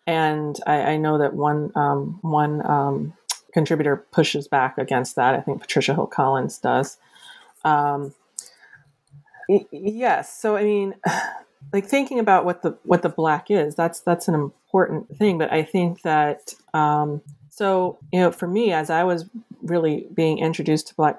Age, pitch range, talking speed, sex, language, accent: 30-49, 150-185 Hz, 160 wpm, female, English, American